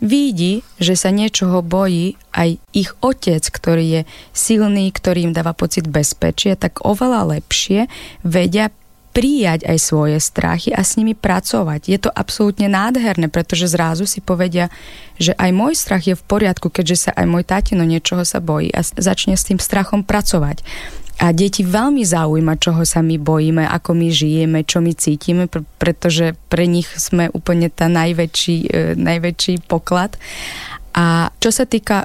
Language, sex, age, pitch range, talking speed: Slovak, female, 20-39, 165-200 Hz, 160 wpm